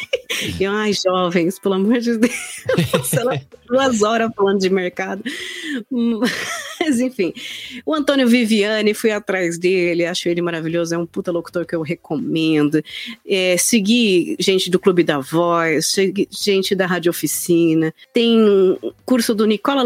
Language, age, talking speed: Portuguese, 30-49, 145 wpm